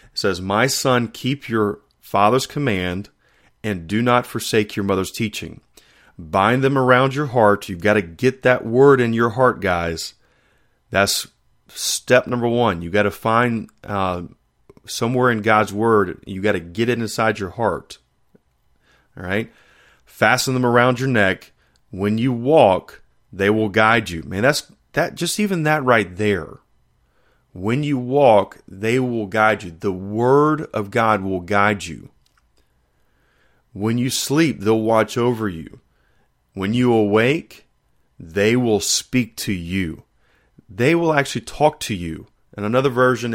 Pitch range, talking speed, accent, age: 100-125 Hz, 150 wpm, American, 30-49